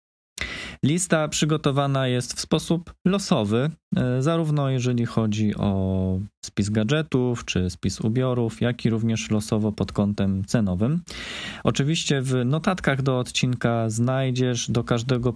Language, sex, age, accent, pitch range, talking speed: Polish, male, 20-39, native, 100-125 Hz, 115 wpm